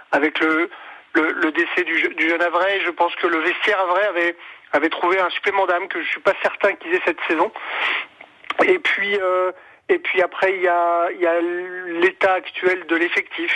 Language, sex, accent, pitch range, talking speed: French, male, French, 160-185 Hz, 190 wpm